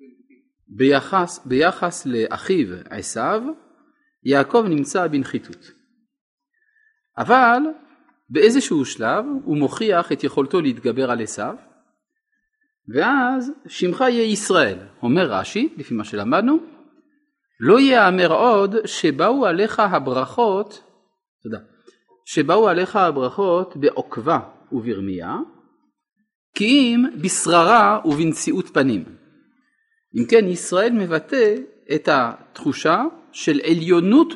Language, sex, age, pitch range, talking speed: Hebrew, male, 40-59, 180-300 Hz, 85 wpm